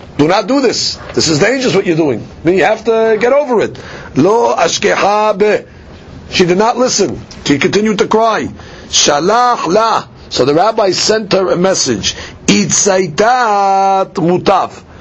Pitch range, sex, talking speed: 185-230 Hz, male, 140 wpm